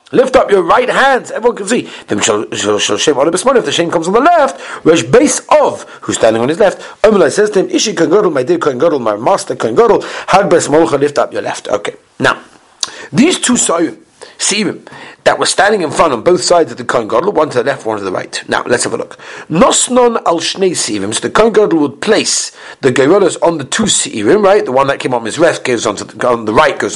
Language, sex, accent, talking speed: English, male, British, 230 wpm